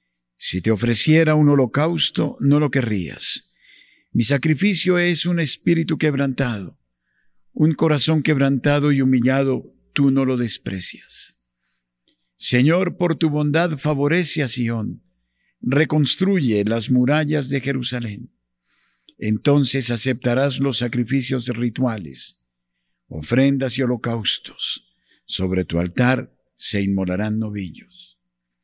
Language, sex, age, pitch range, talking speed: Spanish, male, 50-69, 90-145 Hz, 105 wpm